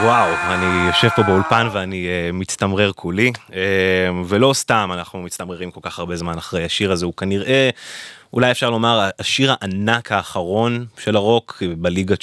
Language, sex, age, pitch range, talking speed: Hebrew, male, 20-39, 90-115 Hz, 145 wpm